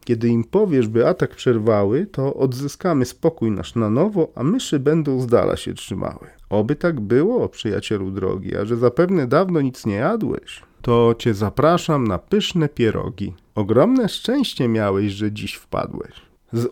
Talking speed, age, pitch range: 160 wpm, 40-59, 110-160 Hz